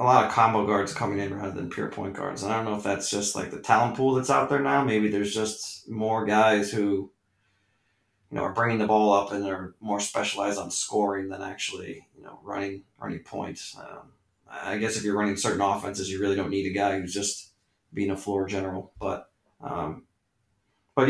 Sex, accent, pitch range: male, American, 100-115 Hz